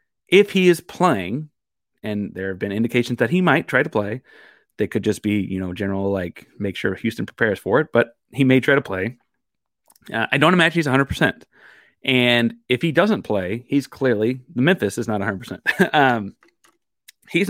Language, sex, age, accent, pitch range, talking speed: English, male, 30-49, American, 115-155 Hz, 190 wpm